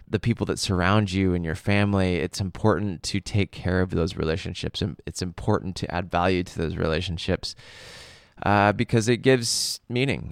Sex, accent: male, American